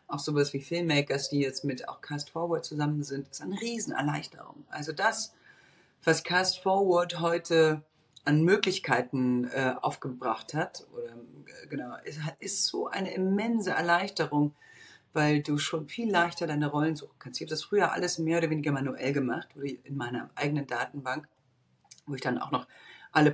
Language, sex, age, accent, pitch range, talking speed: German, female, 40-59, German, 135-170 Hz, 170 wpm